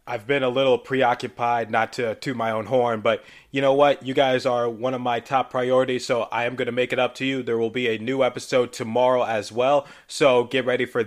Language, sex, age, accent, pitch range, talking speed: English, male, 20-39, American, 135-160 Hz, 250 wpm